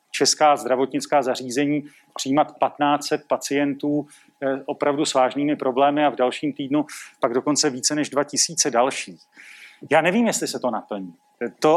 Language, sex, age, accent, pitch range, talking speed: Czech, male, 40-59, native, 135-155 Hz, 140 wpm